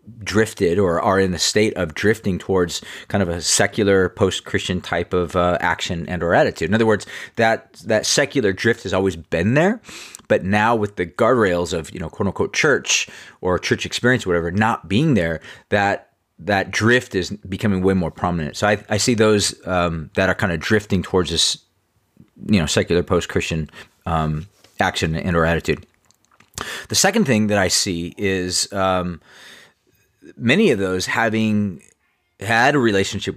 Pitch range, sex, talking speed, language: 90-105 Hz, male, 175 wpm, English